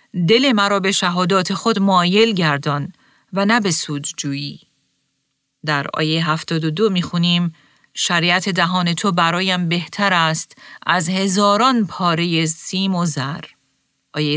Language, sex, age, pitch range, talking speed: Persian, female, 40-59, 155-200 Hz, 120 wpm